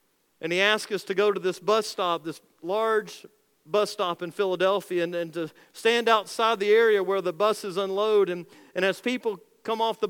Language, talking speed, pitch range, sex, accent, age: English, 200 wpm, 185-225 Hz, male, American, 50-69